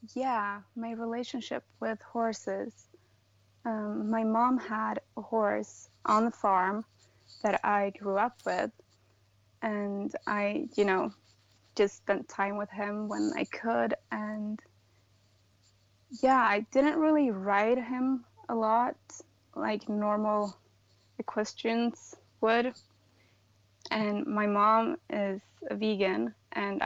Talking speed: 115 wpm